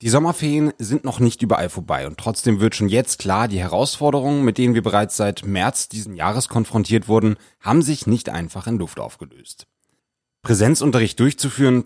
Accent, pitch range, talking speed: German, 100-130 Hz, 170 wpm